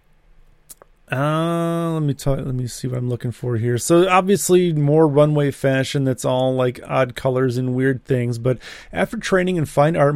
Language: English